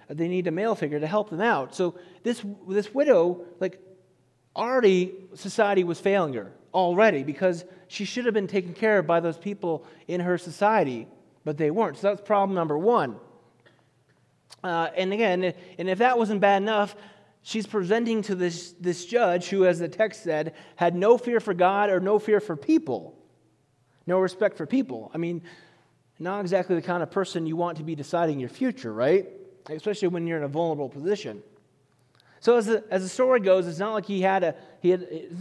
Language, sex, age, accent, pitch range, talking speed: English, male, 30-49, American, 165-210 Hz, 195 wpm